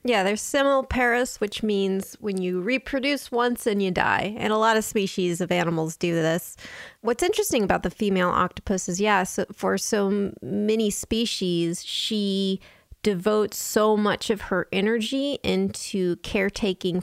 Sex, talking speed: female, 155 wpm